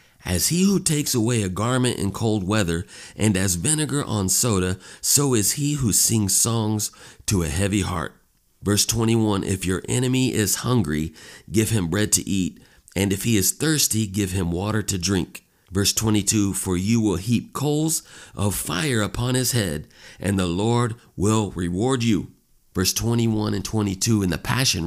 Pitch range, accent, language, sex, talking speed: 95-120 Hz, American, English, male, 175 wpm